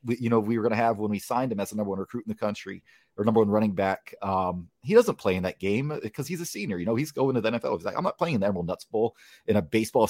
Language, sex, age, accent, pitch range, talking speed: English, male, 30-49, American, 110-140 Hz, 335 wpm